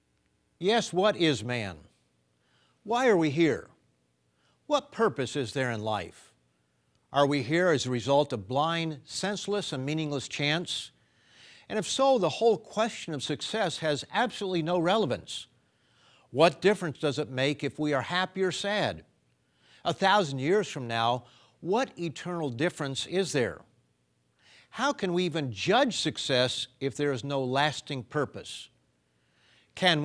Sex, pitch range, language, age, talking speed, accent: male, 125-175 Hz, English, 50-69, 145 wpm, American